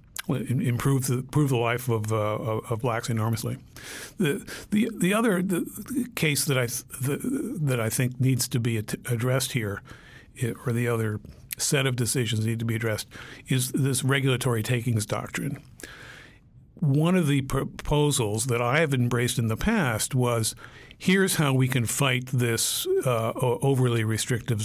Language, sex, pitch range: English, male, 115-140 Hz